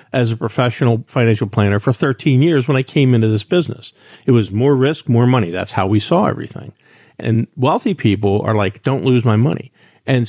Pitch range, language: 110-145 Hz, English